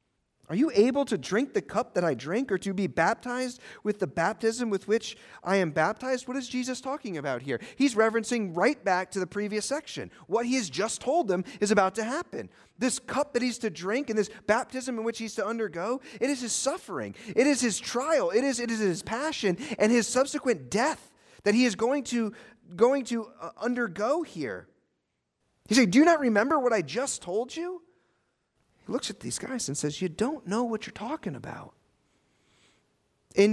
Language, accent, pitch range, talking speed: English, American, 175-250 Hz, 205 wpm